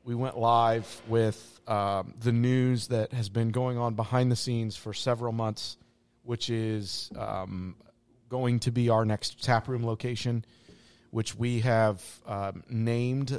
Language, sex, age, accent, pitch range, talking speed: English, male, 40-59, American, 105-125 Hz, 150 wpm